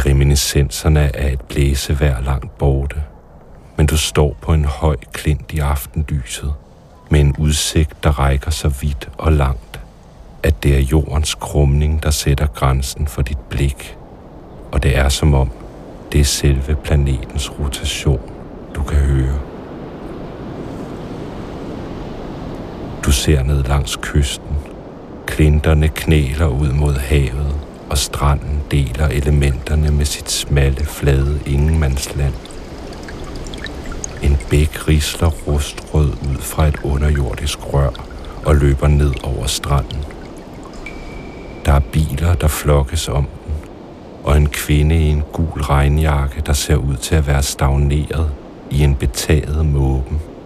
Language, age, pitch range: Danish, 60-79, 70-75 Hz